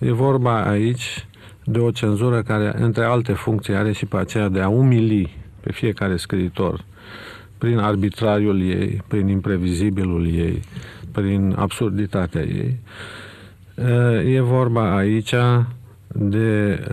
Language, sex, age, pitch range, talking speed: Romanian, male, 50-69, 100-125 Hz, 115 wpm